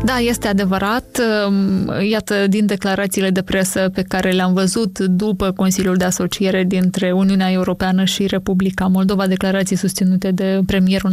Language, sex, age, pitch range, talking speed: Romanian, female, 20-39, 185-205 Hz, 140 wpm